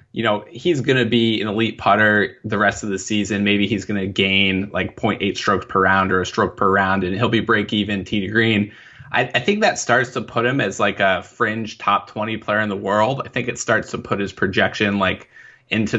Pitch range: 95-110 Hz